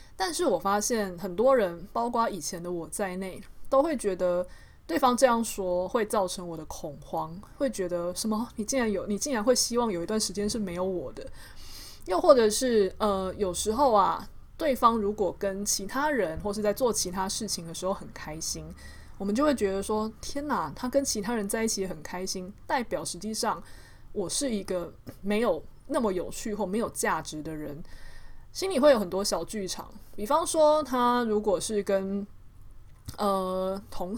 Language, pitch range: Chinese, 180-225 Hz